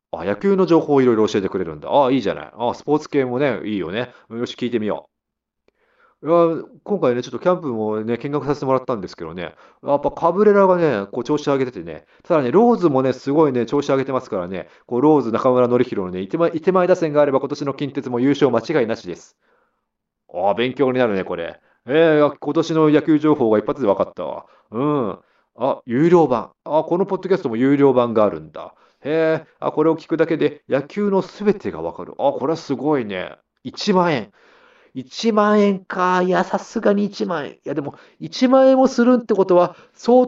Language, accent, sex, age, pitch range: Japanese, native, male, 30-49, 135-195 Hz